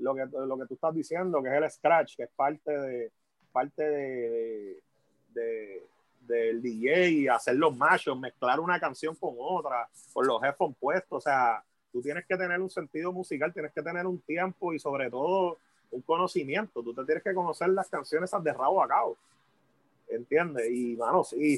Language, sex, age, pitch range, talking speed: English, male, 30-49, 135-185 Hz, 195 wpm